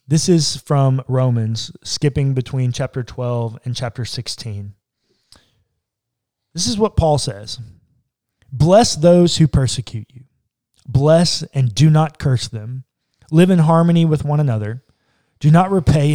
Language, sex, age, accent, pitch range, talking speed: English, male, 20-39, American, 115-155 Hz, 135 wpm